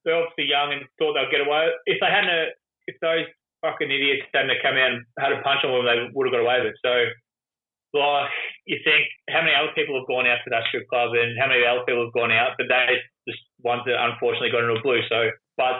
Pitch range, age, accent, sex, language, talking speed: 120-150 Hz, 20-39, Australian, male, English, 265 wpm